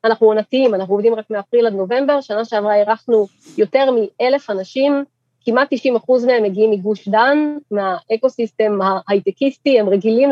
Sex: female